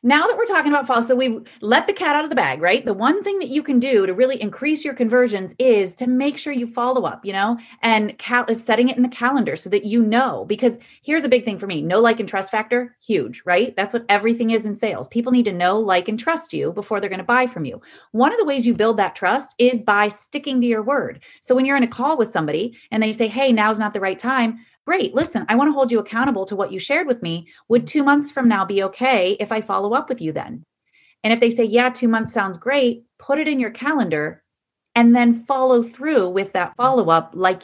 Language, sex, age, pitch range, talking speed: English, female, 30-49, 210-270 Hz, 260 wpm